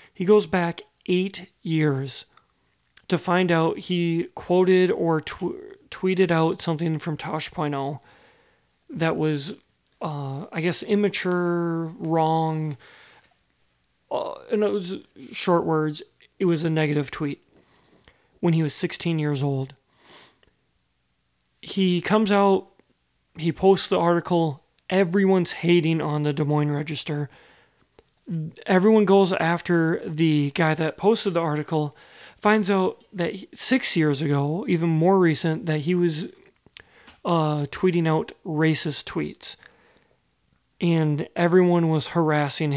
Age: 30-49